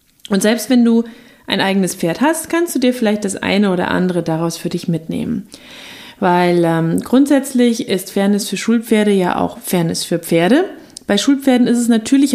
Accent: German